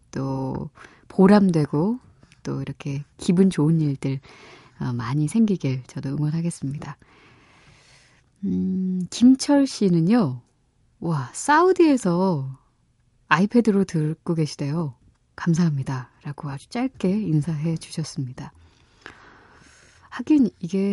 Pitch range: 140-200 Hz